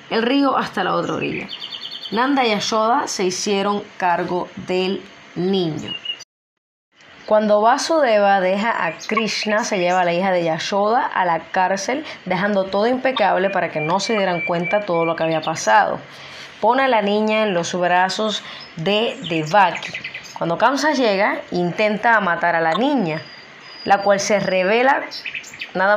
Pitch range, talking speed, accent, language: 180-225 Hz, 150 wpm, American, Spanish